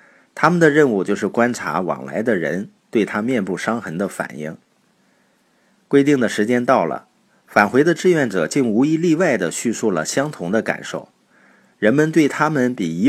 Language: Chinese